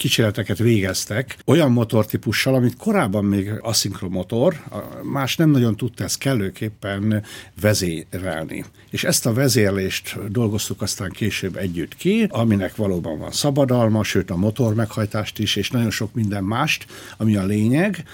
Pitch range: 100-130 Hz